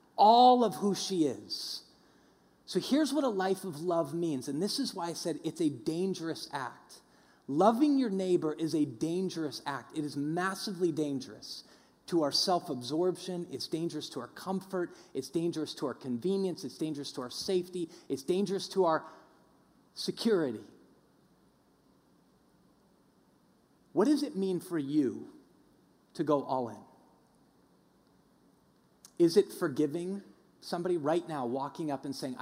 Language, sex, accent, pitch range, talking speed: English, male, American, 140-185 Hz, 145 wpm